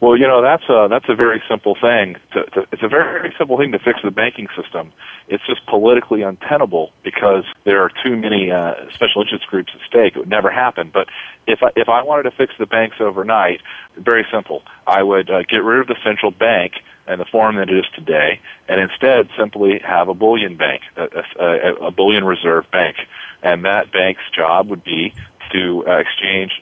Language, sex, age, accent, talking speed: Italian, male, 40-59, American, 200 wpm